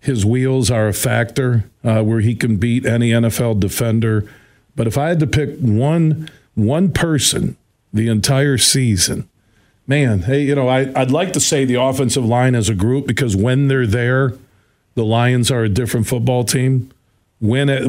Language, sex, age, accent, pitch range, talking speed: English, male, 50-69, American, 115-145 Hz, 180 wpm